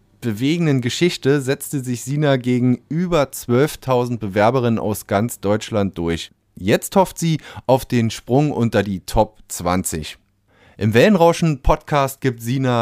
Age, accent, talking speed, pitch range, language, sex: 30-49, German, 130 wpm, 100-135 Hz, German, male